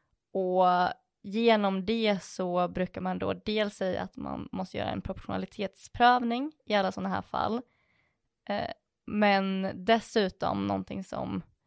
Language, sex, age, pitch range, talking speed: Swedish, female, 20-39, 185-215 Hz, 125 wpm